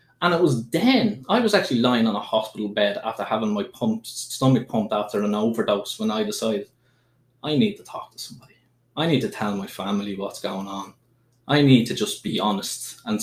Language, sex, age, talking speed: English, male, 20-39, 205 wpm